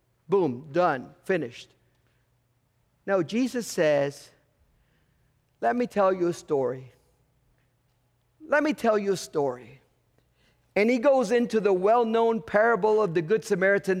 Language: English